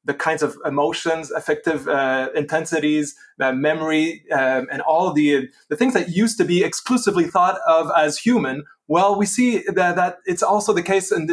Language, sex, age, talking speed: English, male, 20-39, 180 wpm